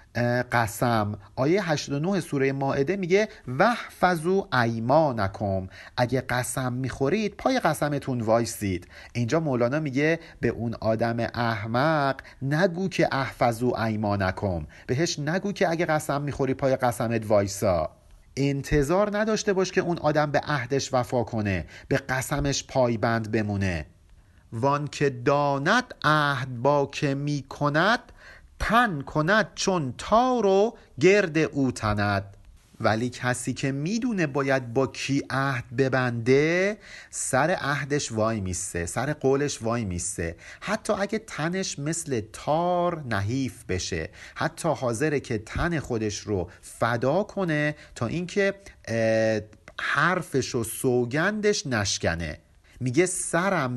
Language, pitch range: Persian, 115-160 Hz